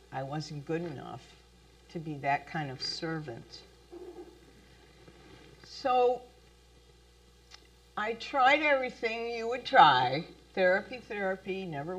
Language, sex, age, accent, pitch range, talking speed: English, female, 50-69, American, 155-225 Hz, 100 wpm